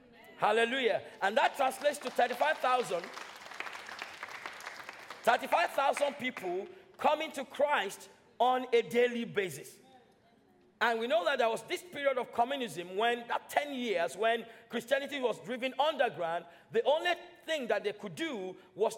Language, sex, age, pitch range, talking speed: English, male, 40-59, 215-280 Hz, 130 wpm